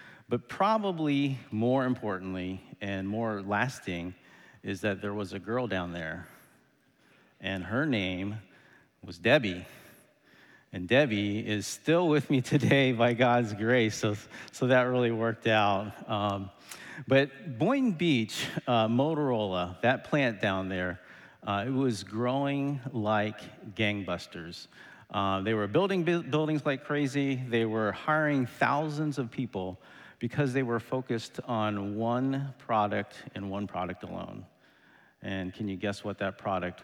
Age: 40-59